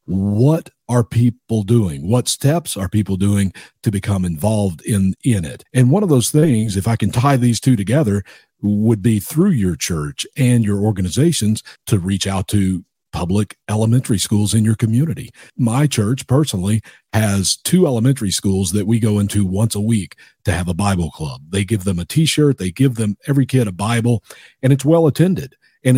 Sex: male